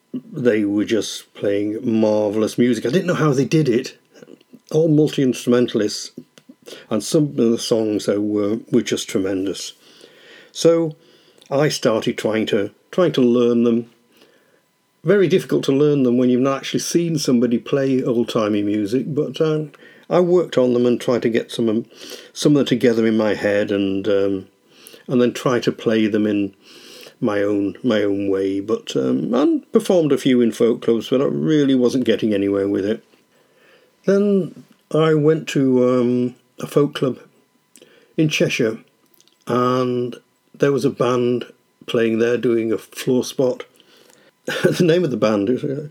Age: 50-69